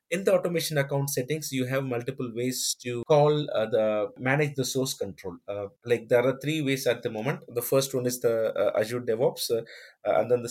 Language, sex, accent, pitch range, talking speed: English, male, Indian, 120-155 Hz, 225 wpm